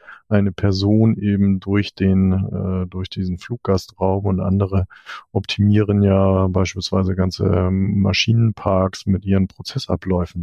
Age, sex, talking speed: 40-59, male, 115 wpm